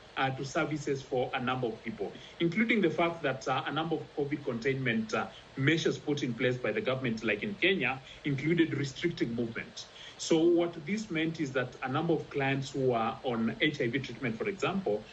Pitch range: 130-165 Hz